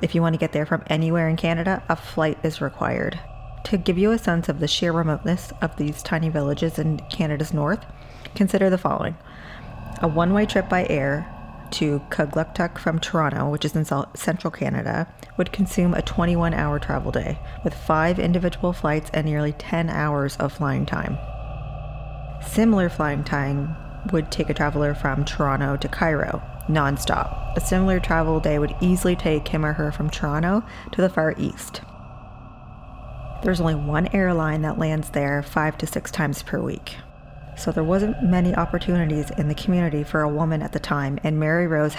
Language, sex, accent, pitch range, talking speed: English, female, American, 145-170 Hz, 175 wpm